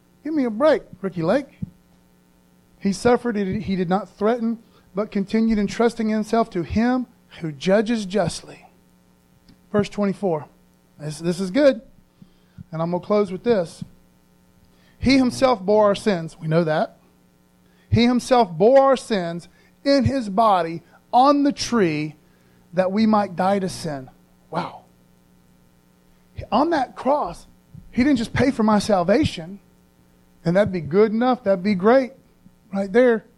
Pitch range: 165-235 Hz